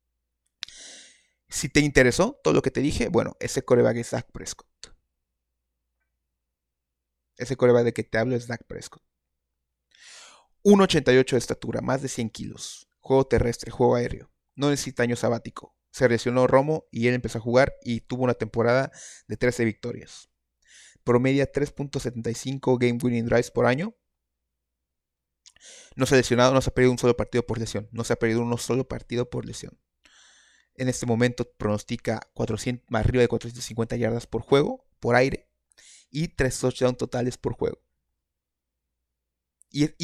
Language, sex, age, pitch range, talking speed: Spanish, male, 30-49, 110-130 Hz, 155 wpm